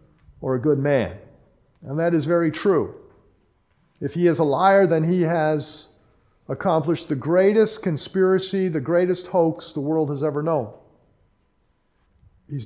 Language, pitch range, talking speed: English, 140-175 Hz, 140 wpm